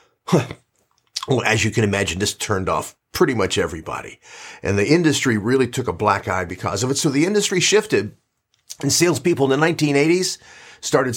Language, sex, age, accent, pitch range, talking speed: English, male, 50-69, American, 110-155 Hz, 170 wpm